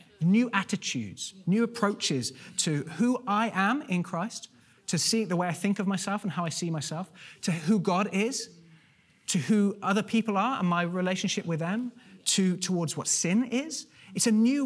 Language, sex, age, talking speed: English, male, 30-49, 180 wpm